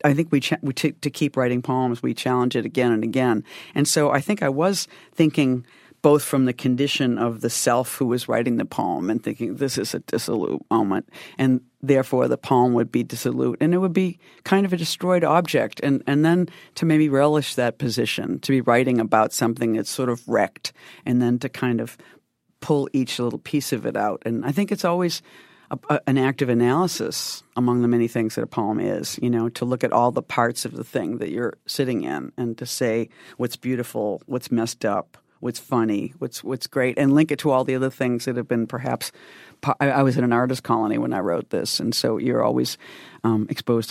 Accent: American